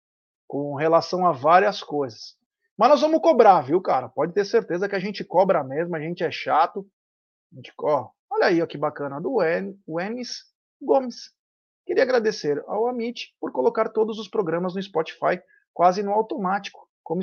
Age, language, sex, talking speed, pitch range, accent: 30-49, Portuguese, male, 180 wpm, 155-220 Hz, Brazilian